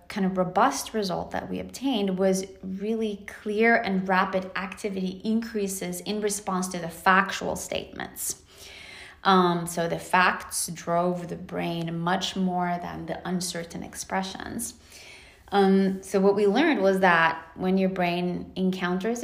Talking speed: 135 wpm